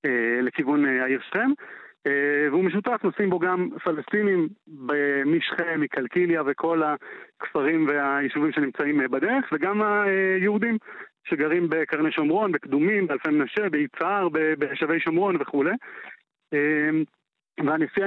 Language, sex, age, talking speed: Hebrew, male, 30-49, 95 wpm